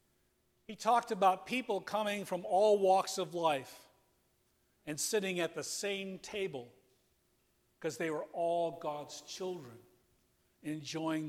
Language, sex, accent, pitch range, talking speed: English, male, American, 140-190 Hz, 120 wpm